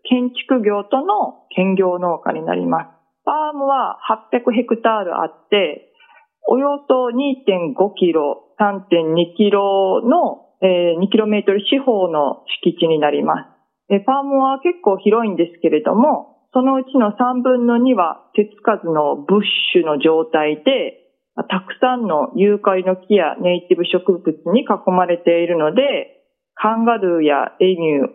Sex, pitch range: female, 175-250 Hz